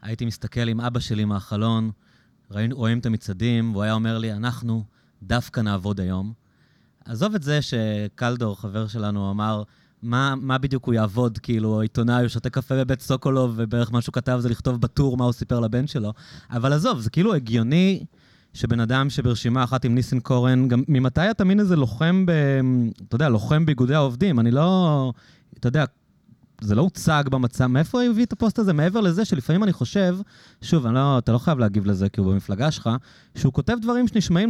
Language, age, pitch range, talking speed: Hebrew, 30-49, 115-150 Hz, 185 wpm